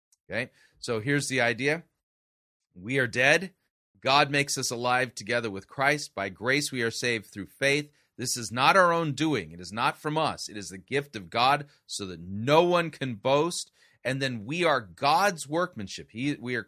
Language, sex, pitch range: English, male, 100-135 Hz